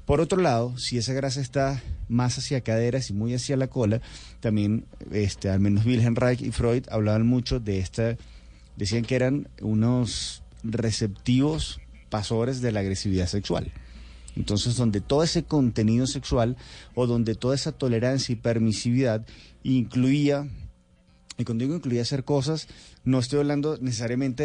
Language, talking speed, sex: Spanish, 150 wpm, male